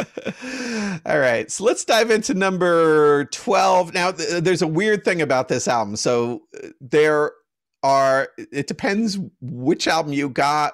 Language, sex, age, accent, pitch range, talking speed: English, male, 40-59, American, 115-150 Hz, 145 wpm